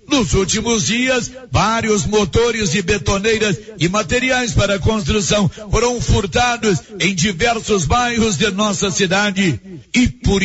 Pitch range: 185-230 Hz